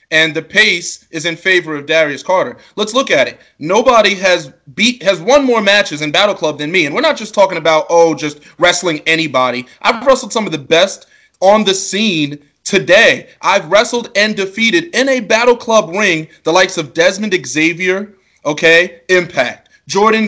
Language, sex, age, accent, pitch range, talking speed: English, male, 20-39, American, 165-220 Hz, 185 wpm